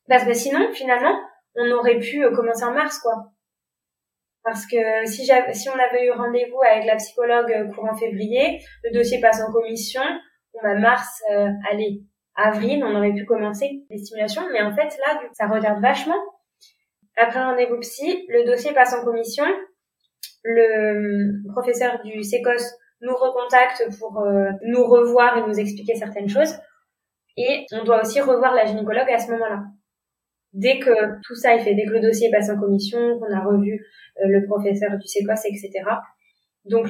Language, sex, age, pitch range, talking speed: French, female, 20-39, 215-250 Hz, 175 wpm